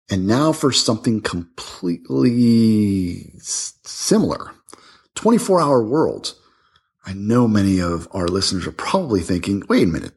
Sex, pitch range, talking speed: male, 85-110 Hz, 125 wpm